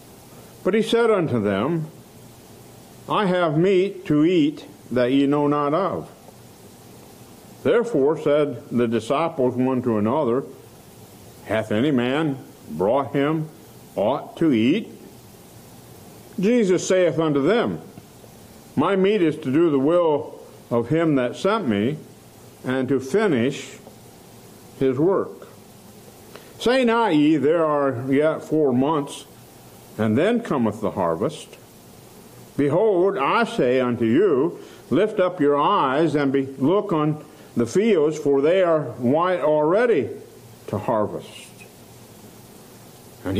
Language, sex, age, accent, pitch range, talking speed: English, male, 60-79, American, 135-195 Hz, 120 wpm